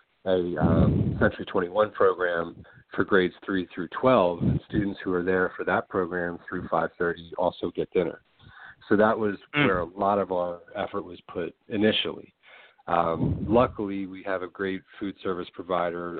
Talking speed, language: 165 wpm, English